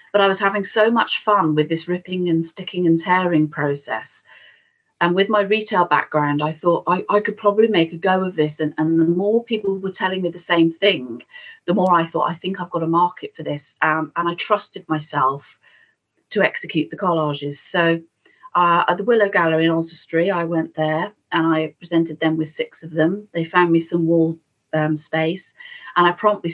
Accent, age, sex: British, 40-59, female